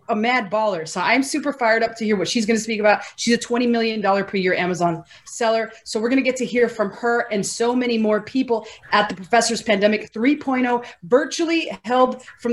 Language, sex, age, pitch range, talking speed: English, female, 30-49, 205-250 Hz, 220 wpm